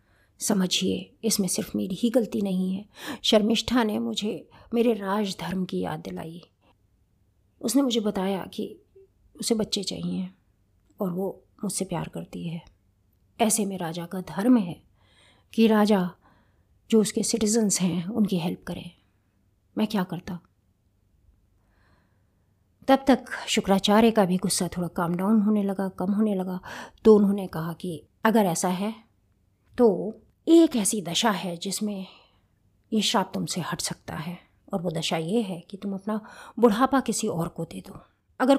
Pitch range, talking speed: 165-220 Hz, 150 wpm